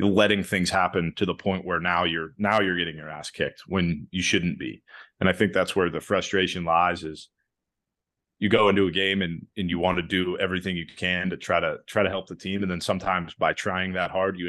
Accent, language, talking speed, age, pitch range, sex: American, English, 240 wpm, 30-49, 90-100 Hz, male